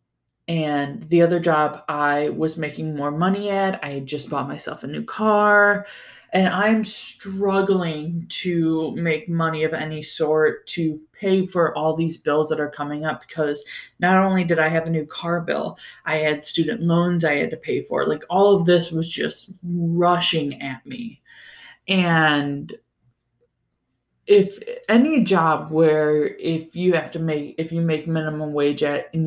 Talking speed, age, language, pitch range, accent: 165 wpm, 20-39, English, 150-190 Hz, American